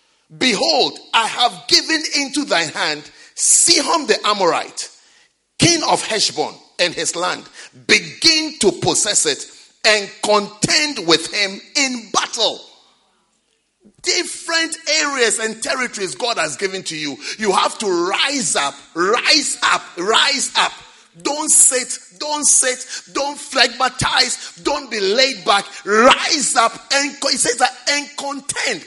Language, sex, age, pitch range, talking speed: English, male, 40-59, 225-315 Hz, 130 wpm